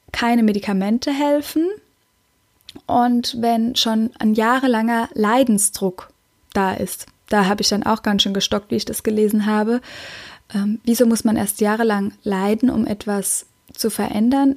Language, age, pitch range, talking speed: German, 10-29, 215-255 Hz, 145 wpm